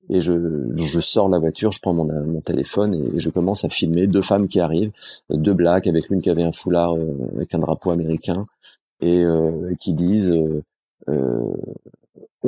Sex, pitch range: male, 90-115 Hz